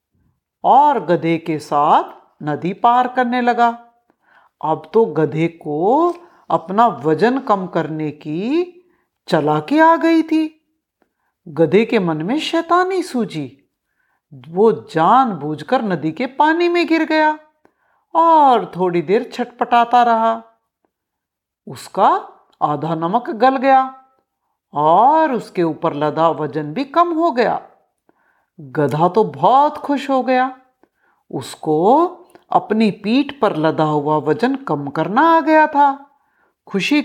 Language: Hindi